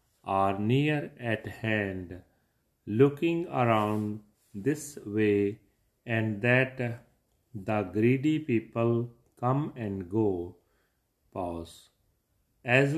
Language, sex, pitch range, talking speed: Punjabi, male, 105-125 Hz, 85 wpm